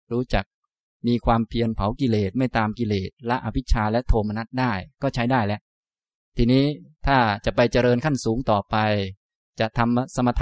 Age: 20-39